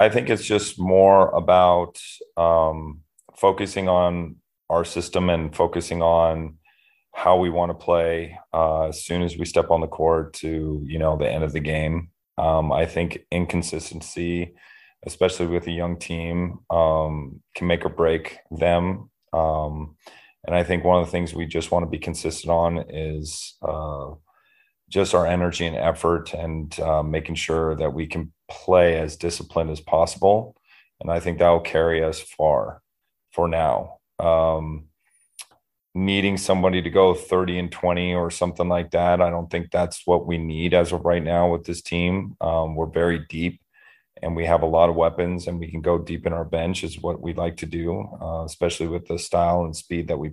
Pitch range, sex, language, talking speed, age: 80-90 Hz, male, English, 185 wpm, 30-49